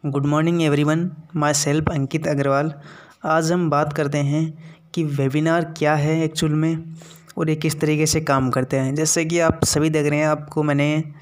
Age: 20-39